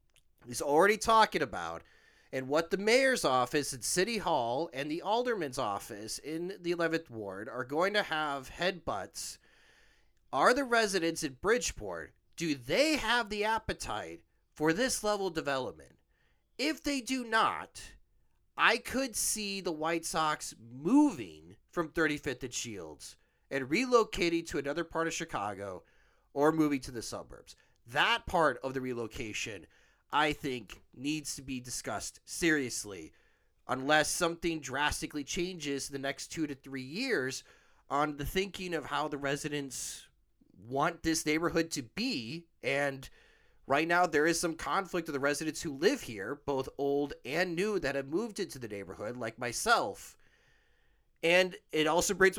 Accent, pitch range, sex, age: American, 135-195 Hz, male, 30-49